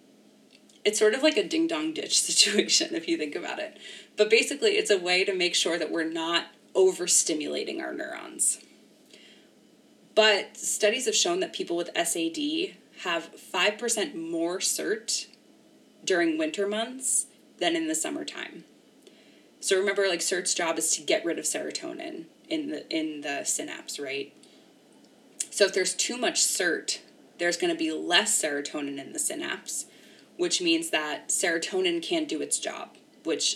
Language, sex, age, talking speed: English, female, 20-39, 155 wpm